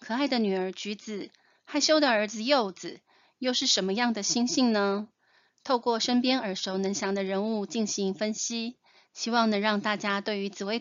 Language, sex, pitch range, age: Chinese, female, 190-230 Hz, 30-49